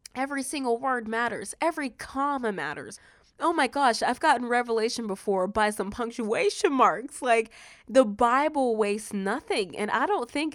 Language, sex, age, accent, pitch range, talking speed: English, female, 20-39, American, 205-285 Hz, 155 wpm